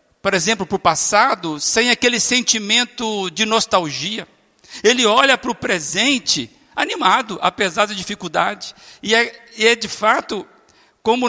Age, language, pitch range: 60-79, Portuguese, 190-230 Hz